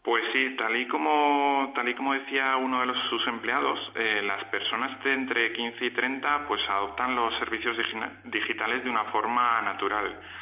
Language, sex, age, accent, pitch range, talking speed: Spanish, male, 30-49, Spanish, 100-125 Hz, 185 wpm